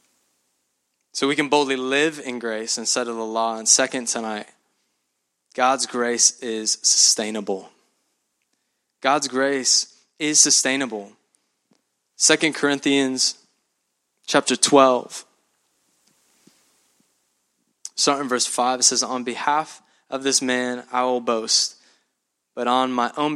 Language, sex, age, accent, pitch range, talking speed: English, male, 20-39, American, 120-140 Hz, 110 wpm